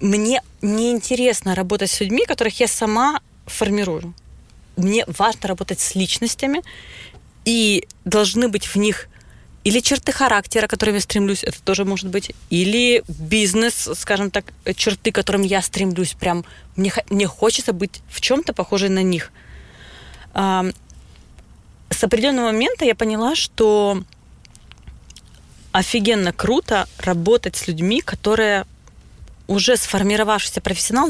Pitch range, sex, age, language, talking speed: 185-225 Hz, female, 20-39, Ukrainian, 120 wpm